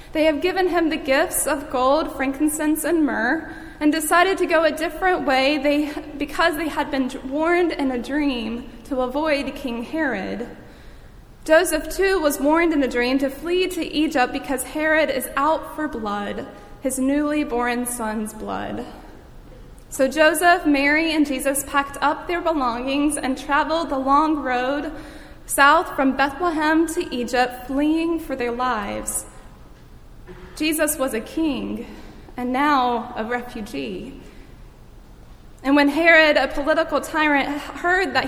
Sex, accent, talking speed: female, American, 145 wpm